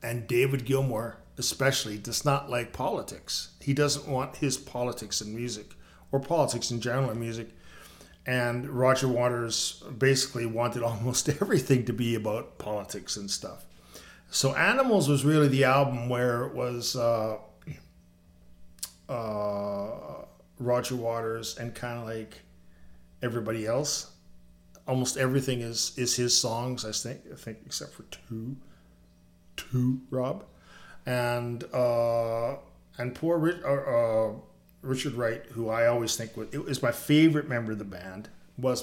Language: English